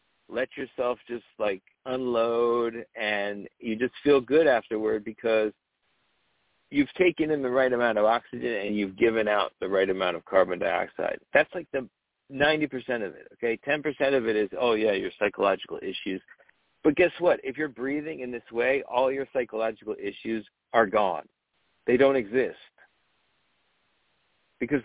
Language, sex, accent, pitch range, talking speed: English, male, American, 120-155 Hz, 155 wpm